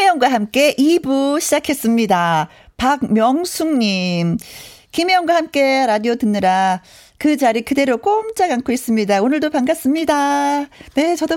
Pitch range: 195-285 Hz